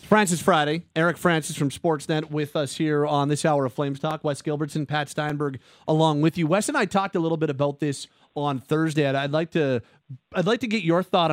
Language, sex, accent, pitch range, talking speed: English, male, American, 140-175 Hz, 230 wpm